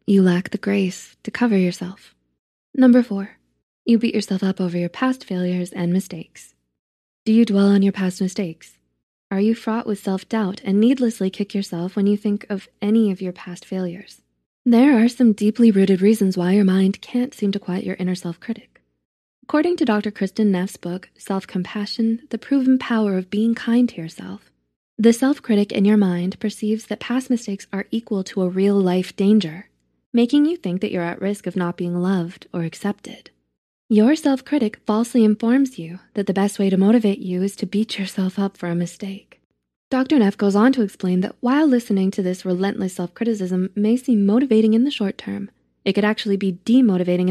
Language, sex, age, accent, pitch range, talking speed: English, female, 20-39, American, 180-225 Hz, 190 wpm